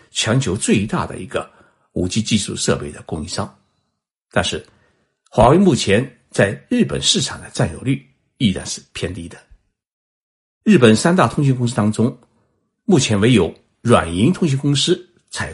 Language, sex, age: Chinese, male, 60-79